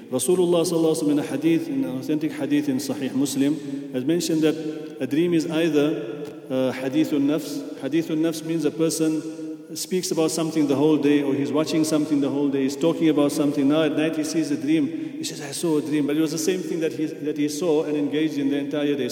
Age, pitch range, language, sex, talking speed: 40-59, 145-160 Hz, English, male, 225 wpm